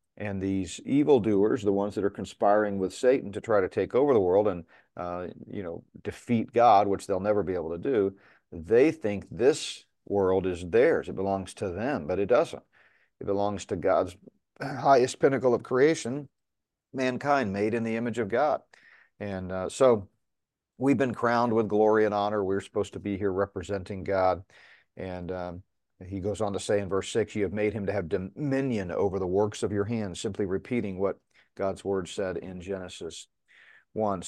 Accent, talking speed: American, 185 wpm